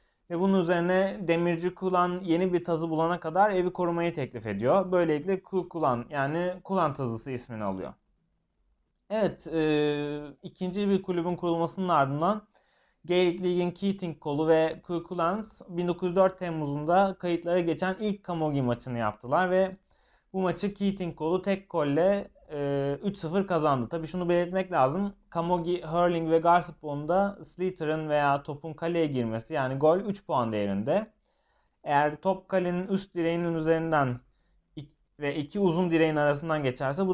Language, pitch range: Turkish, 150-185 Hz